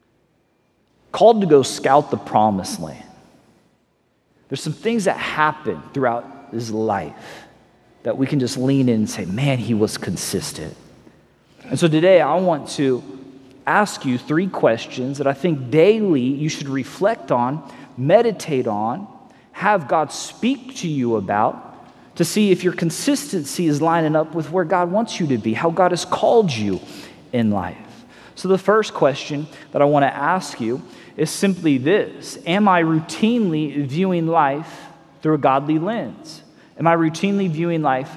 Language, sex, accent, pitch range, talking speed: English, male, American, 140-200 Hz, 160 wpm